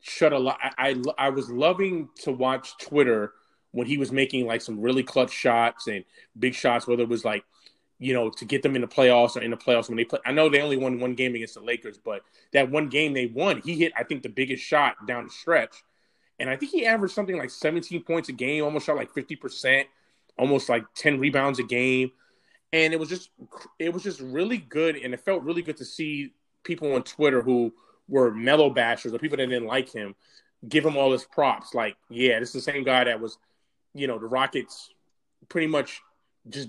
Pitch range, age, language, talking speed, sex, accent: 125-160 Hz, 20-39, English, 230 wpm, male, American